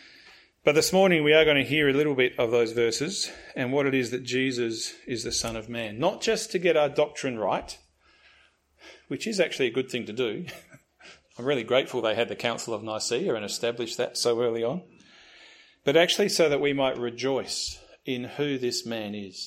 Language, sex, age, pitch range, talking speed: English, male, 30-49, 80-135 Hz, 205 wpm